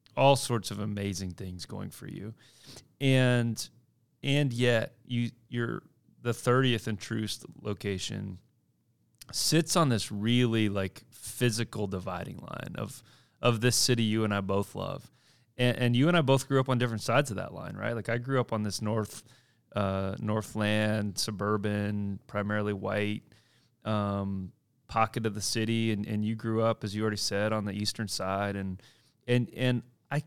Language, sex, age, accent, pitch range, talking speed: English, male, 30-49, American, 105-125 Hz, 170 wpm